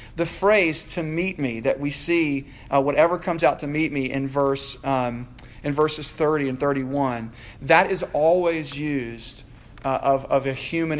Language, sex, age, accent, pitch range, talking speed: English, male, 40-59, American, 125-155 Hz, 175 wpm